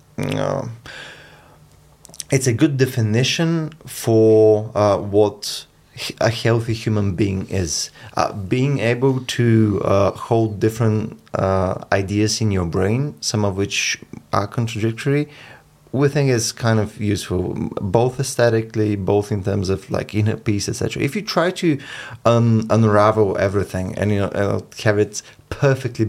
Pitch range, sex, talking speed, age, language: 105-130 Hz, male, 140 wpm, 30-49, Bulgarian